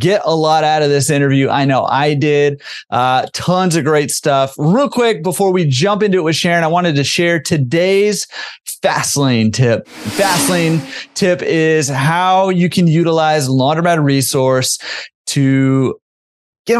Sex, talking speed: male, 160 wpm